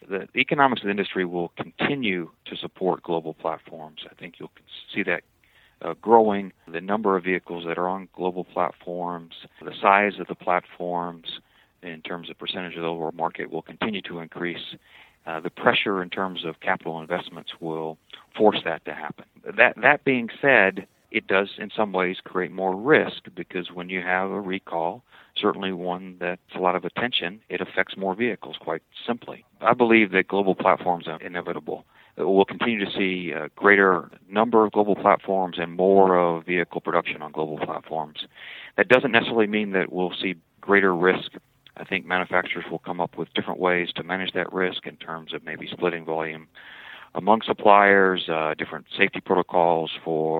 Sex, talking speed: male, 175 wpm